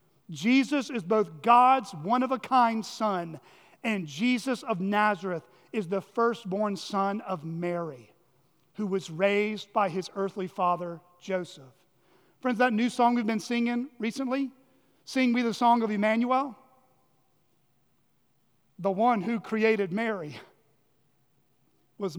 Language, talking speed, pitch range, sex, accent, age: English, 120 wpm, 190-255 Hz, male, American, 40-59